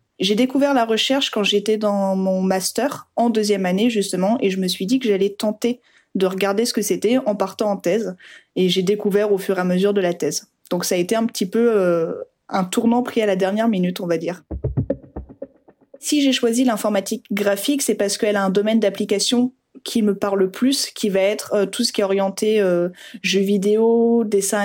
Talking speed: 215 wpm